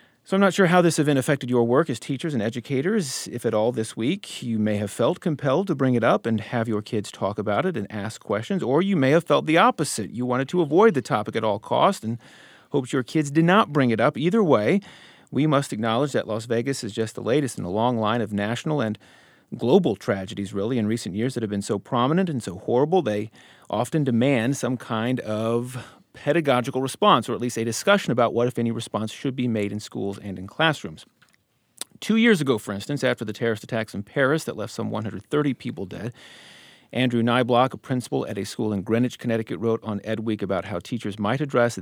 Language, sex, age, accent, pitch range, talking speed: English, male, 40-59, American, 110-140 Hz, 225 wpm